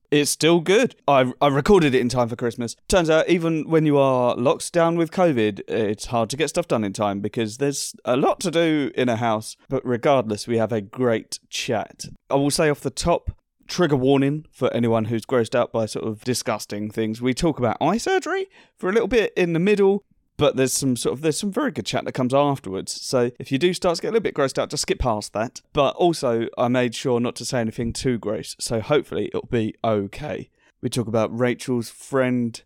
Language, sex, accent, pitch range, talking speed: English, male, British, 120-160 Hz, 230 wpm